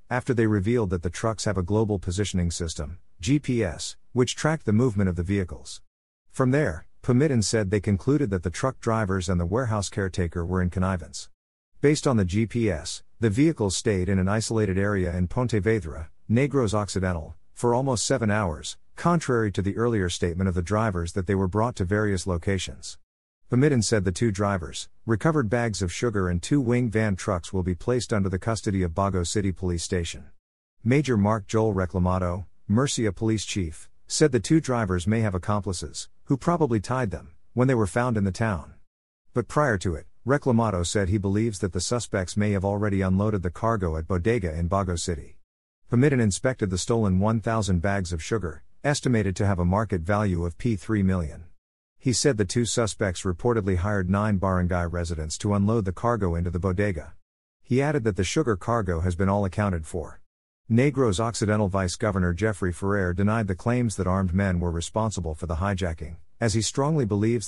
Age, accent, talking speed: 50-69, American, 185 wpm